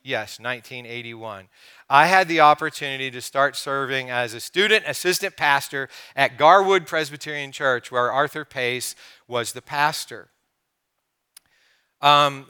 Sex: male